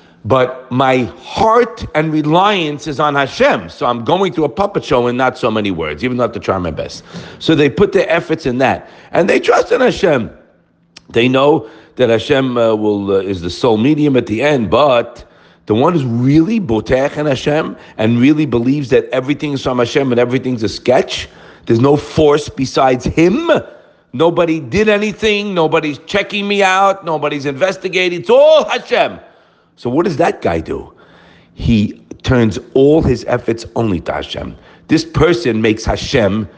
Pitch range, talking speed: 125-160 Hz, 175 wpm